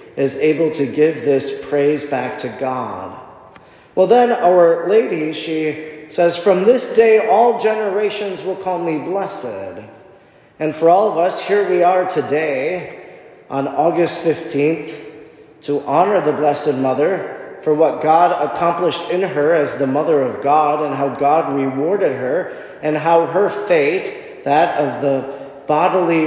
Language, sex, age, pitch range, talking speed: English, male, 40-59, 145-180 Hz, 150 wpm